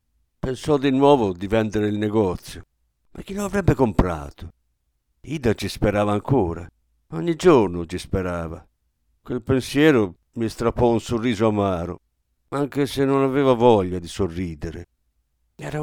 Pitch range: 85-135 Hz